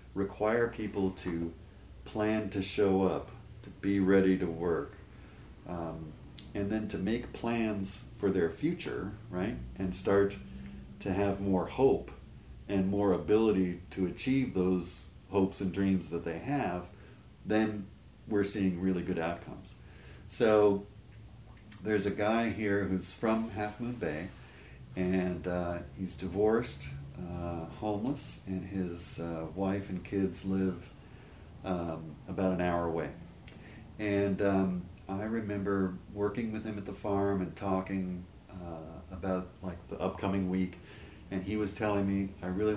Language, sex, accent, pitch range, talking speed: English, male, American, 90-100 Hz, 140 wpm